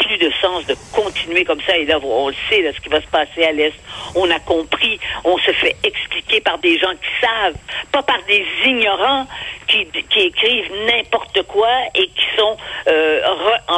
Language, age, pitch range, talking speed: French, 50-69, 170-255 Hz, 190 wpm